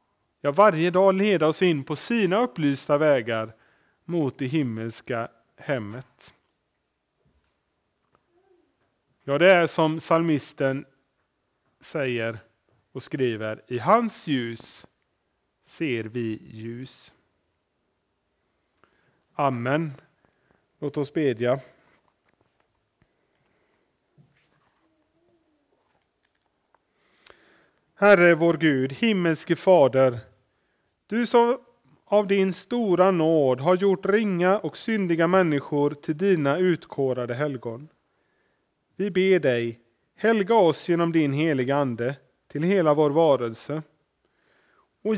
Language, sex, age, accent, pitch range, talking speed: Swedish, male, 30-49, Norwegian, 135-190 Hz, 90 wpm